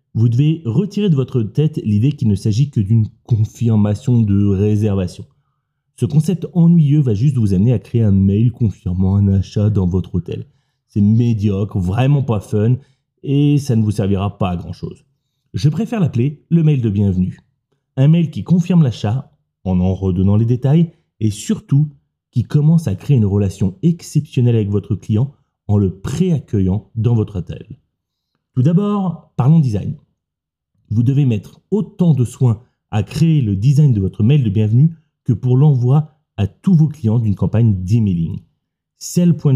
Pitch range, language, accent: 105-145 Hz, French, French